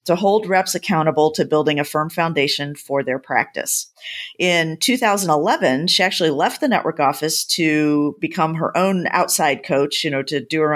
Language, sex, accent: English, female, American